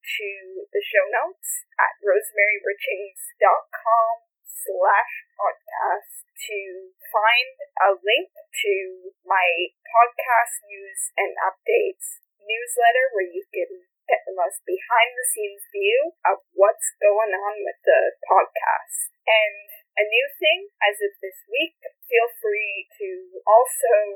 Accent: American